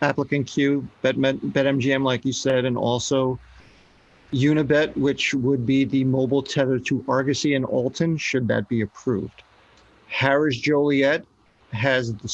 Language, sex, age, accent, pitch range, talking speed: English, male, 40-59, American, 120-140 Hz, 140 wpm